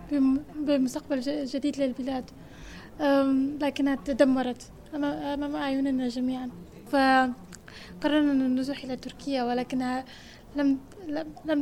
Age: 10-29